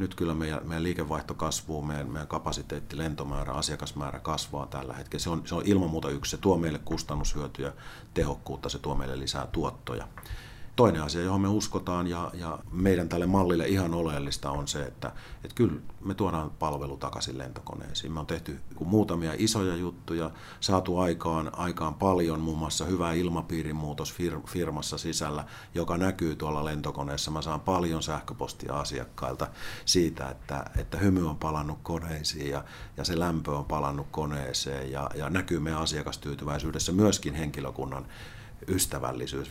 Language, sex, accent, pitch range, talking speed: Finnish, male, native, 75-90 Hz, 155 wpm